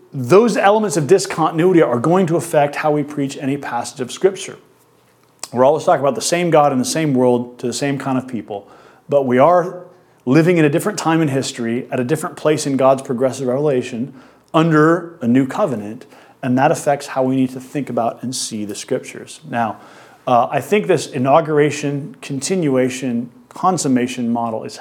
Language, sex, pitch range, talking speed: English, male, 125-155 Hz, 185 wpm